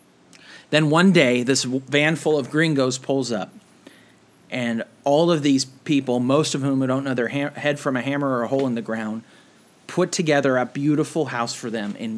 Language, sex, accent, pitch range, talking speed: English, male, American, 115-145 Hz, 195 wpm